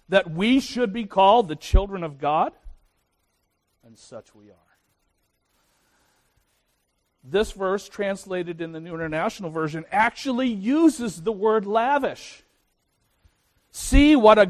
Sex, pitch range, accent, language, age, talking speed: male, 115-175 Hz, American, English, 50-69, 120 wpm